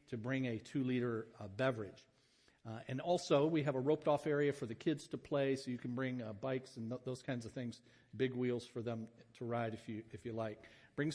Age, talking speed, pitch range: 50-69, 240 wpm, 120-145 Hz